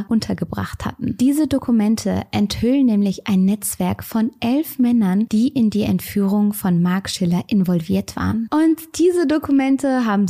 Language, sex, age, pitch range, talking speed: German, female, 20-39, 185-240 Hz, 140 wpm